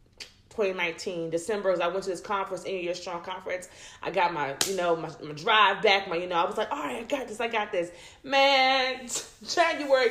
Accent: American